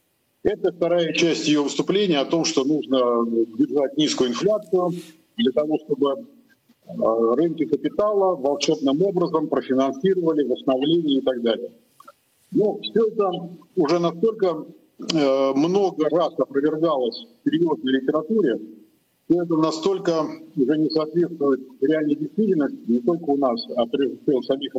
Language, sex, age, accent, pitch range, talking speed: Russian, male, 50-69, native, 140-185 Hz, 120 wpm